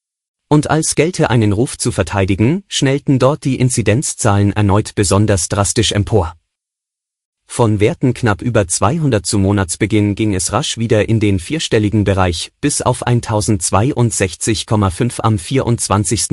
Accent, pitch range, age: German, 100-130 Hz, 30-49